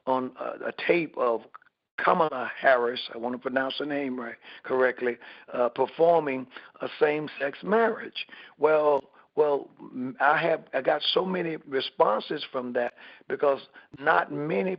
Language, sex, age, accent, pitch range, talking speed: English, male, 60-79, American, 130-160 Hz, 140 wpm